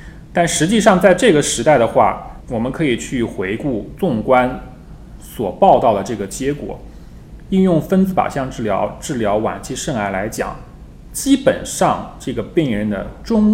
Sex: male